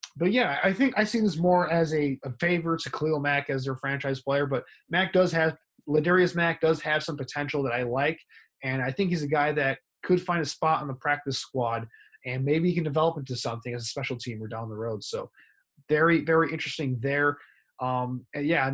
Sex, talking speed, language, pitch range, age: male, 225 wpm, English, 135-165 Hz, 20-39